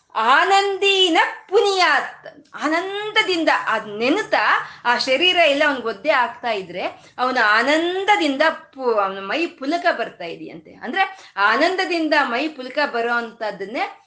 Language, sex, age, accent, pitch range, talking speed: Kannada, female, 20-39, native, 215-315 Hz, 100 wpm